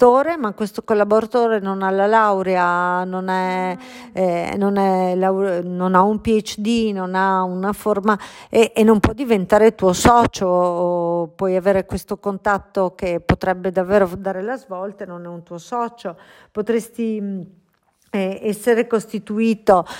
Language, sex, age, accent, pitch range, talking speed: Italian, female, 50-69, native, 175-215 Hz, 140 wpm